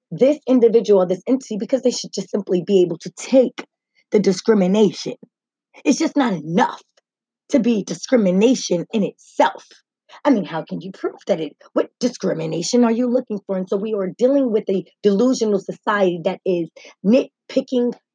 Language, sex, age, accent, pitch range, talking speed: English, female, 20-39, American, 195-270 Hz, 170 wpm